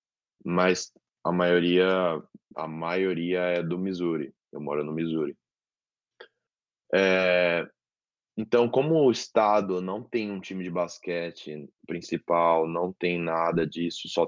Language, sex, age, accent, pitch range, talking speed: Portuguese, male, 20-39, Brazilian, 85-110 Hz, 120 wpm